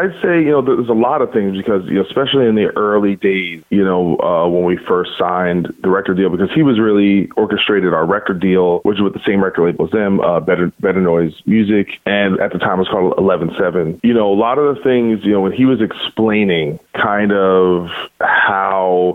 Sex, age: male, 30-49